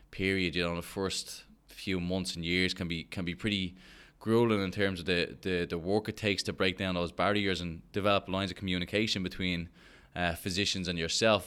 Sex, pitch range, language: male, 90-105 Hz, English